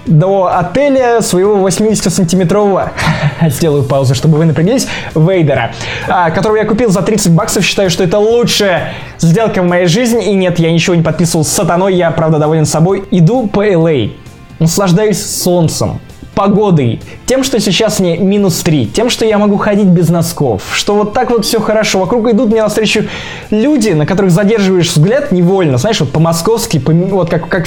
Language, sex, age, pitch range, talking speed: Russian, male, 20-39, 165-220 Hz, 170 wpm